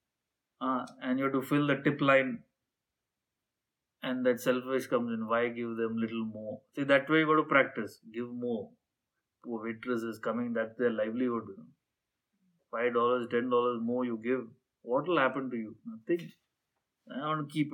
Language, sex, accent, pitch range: English, male, Indian, 125-200 Hz